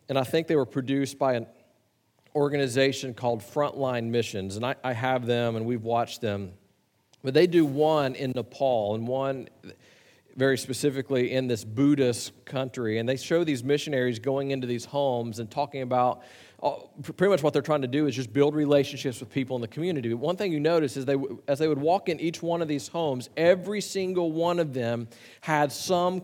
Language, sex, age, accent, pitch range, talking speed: English, male, 40-59, American, 130-170 Hz, 200 wpm